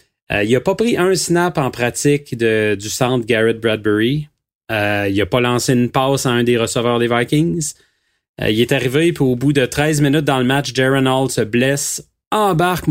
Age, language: 30-49, French